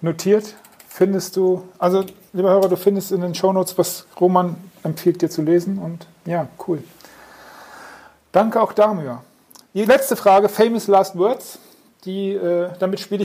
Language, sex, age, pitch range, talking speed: German, male, 40-59, 175-205 Hz, 150 wpm